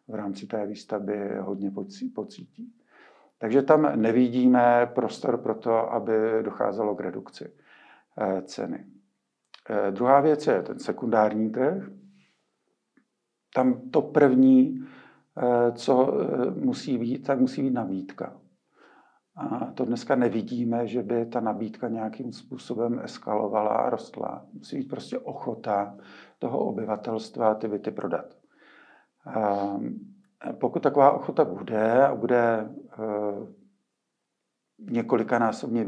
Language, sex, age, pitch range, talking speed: Czech, male, 50-69, 110-130 Hz, 100 wpm